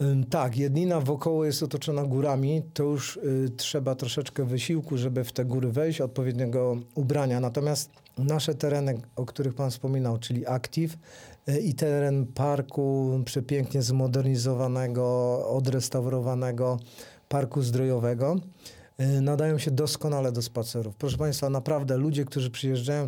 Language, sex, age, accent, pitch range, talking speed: Polish, male, 40-59, native, 125-145 Hz, 120 wpm